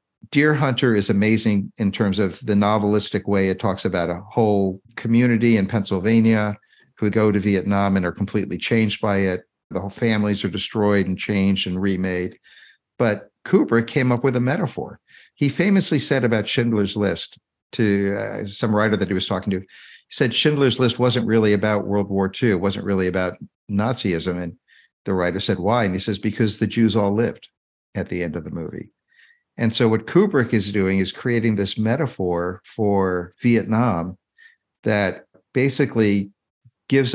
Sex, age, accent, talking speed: male, 50-69, American, 175 wpm